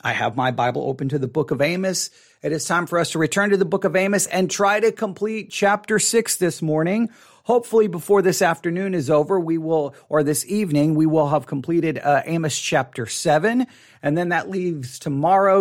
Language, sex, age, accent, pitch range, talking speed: English, male, 40-59, American, 150-195 Hz, 210 wpm